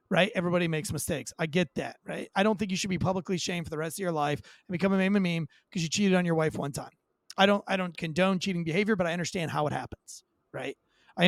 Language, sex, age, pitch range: English, male, 30-49, 170-210 Hz